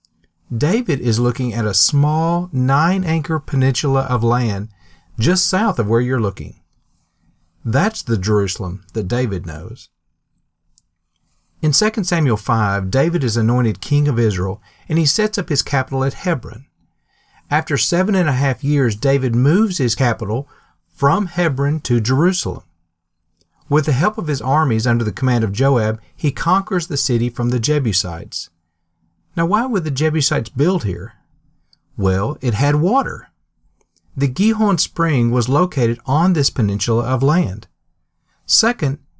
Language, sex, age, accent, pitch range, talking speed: English, male, 40-59, American, 110-155 Hz, 145 wpm